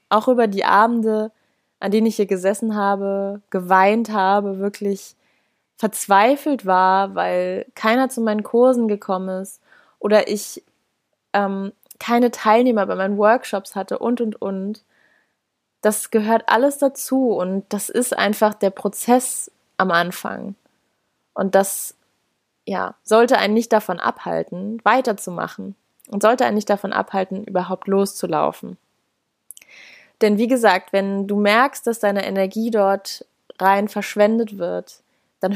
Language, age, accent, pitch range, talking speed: German, 20-39, German, 195-230 Hz, 130 wpm